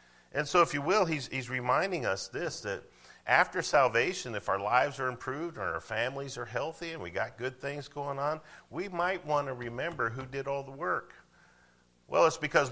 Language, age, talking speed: English, 50-69, 205 wpm